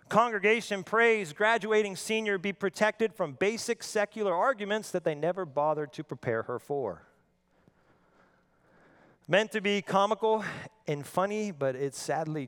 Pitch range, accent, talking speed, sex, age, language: 130-185 Hz, American, 130 wpm, male, 40-59, English